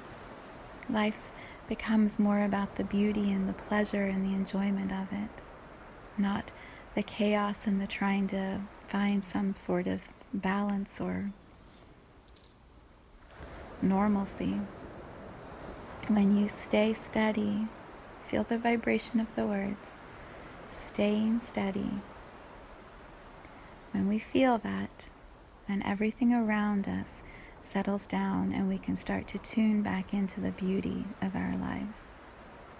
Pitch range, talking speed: 190-210 Hz, 115 wpm